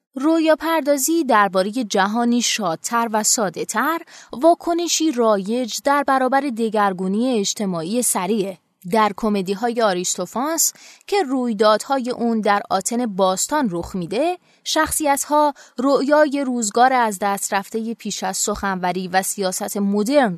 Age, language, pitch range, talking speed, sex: 20-39, Persian, 195-255 Hz, 120 wpm, female